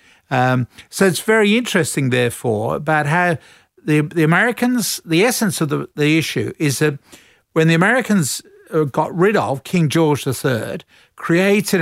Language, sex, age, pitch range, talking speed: English, male, 50-69, 140-180 Hz, 145 wpm